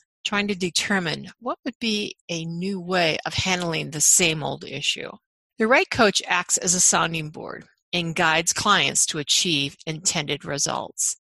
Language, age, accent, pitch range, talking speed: English, 50-69, American, 160-195 Hz, 160 wpm